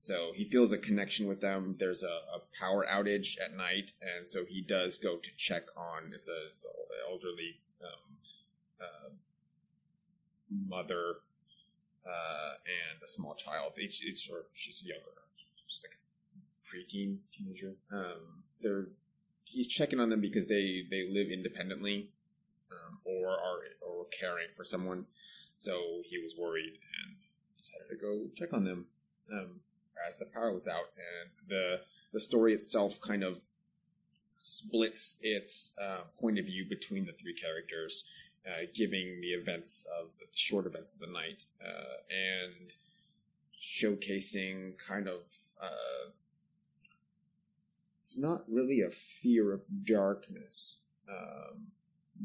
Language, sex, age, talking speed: English, male, 30-49, 140 wpm